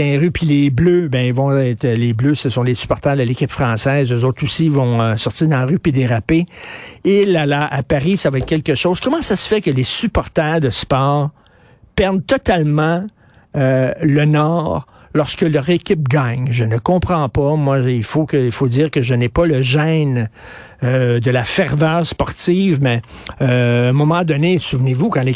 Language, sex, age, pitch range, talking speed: French, male, 60-79, 130-165 Hz, 200 wpm